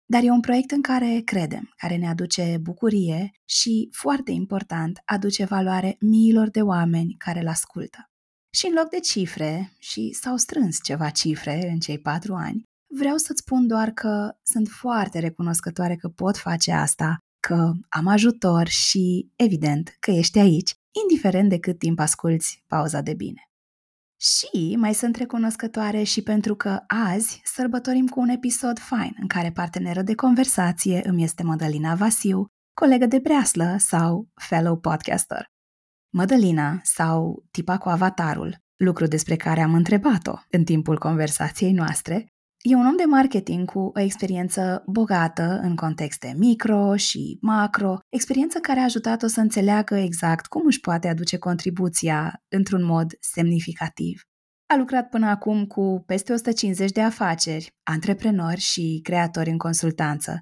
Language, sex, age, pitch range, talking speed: Romanian, female, 20-39, 170-225 Hz, 150 wpm